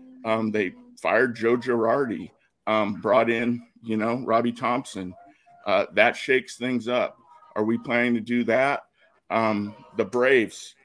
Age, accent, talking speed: 50-69, American, 145 wpm